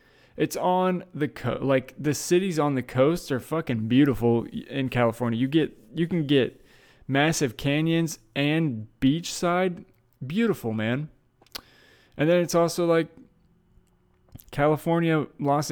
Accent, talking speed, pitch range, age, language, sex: American, 120 wpm, 115-145 Hz, 20-39, English, male